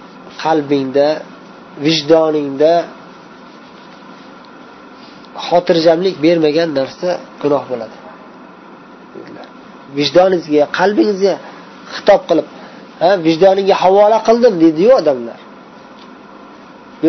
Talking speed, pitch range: 65 wpm, 150-195 Hz